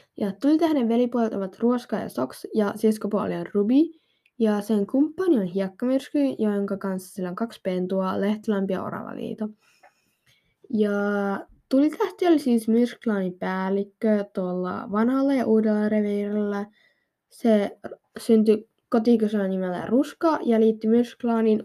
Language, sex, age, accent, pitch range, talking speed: Finnish, female, 10-29, native, 200-260 Hz, 115 wpm